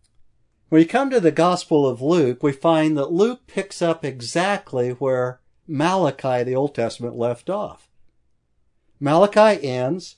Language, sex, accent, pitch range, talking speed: English, male, American, 140-190 Hz, 140 wpm